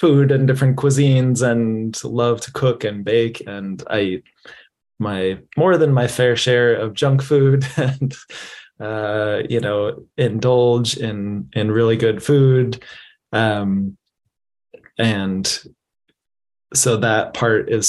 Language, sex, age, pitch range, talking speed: English, male, 20-39, 105-125 Hz, 130 wpm